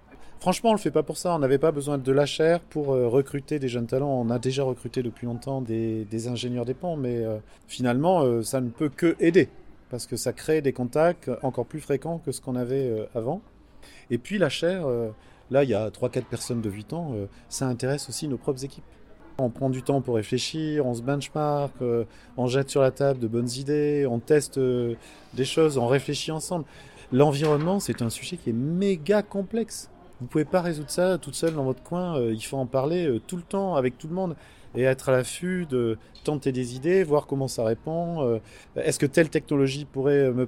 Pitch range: 120-155 Hz